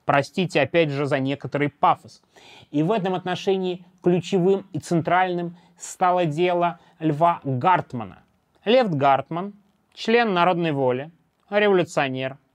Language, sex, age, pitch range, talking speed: Russian, male, 30-49, 145-190 Hz, 110 wpm